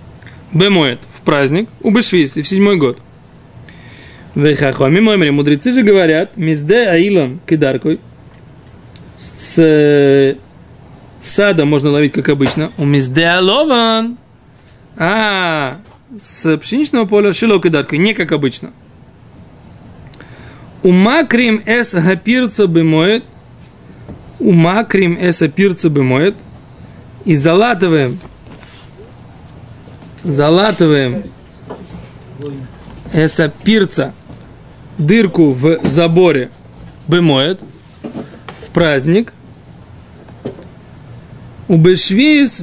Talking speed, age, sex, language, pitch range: 80 wpm, 20-39, male, Russian, 145-200 Hz